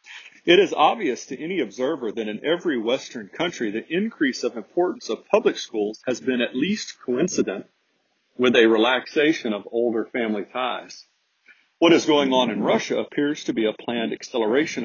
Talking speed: 170 wpm